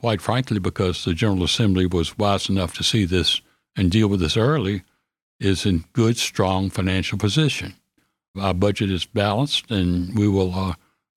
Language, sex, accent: English, male, American